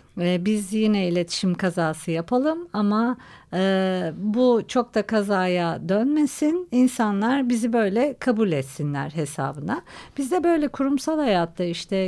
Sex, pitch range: female, 165-230 Hz